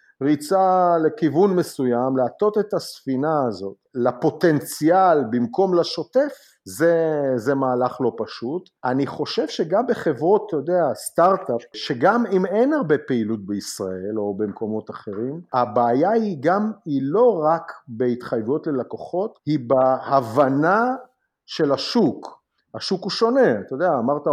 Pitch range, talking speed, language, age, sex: 130-190 Hz, 120 wpm, Hebrew, 50-69, male